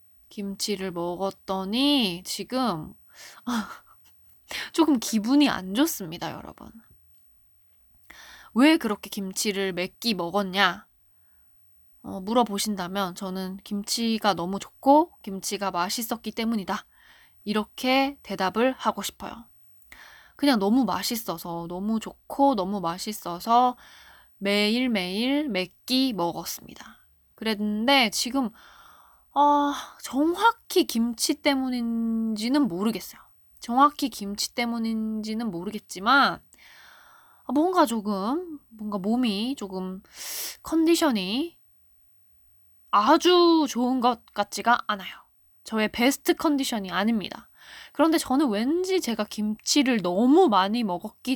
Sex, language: female, Korean